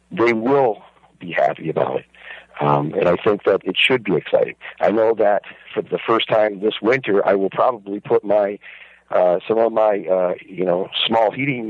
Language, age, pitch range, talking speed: English, 50-69, 100-120 Hz, 195 wpm